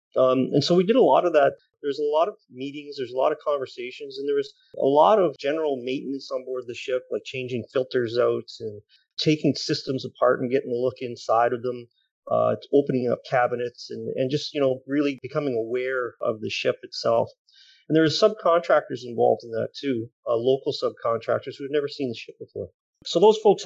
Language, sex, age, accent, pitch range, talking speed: English, male, 30-49, American, 120-155 Hz, 215 wpm